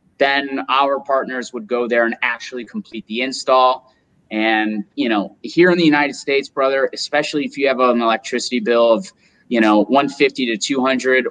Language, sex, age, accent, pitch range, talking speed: English, male, 30-49, American, 110-130 Hz, 175 wpm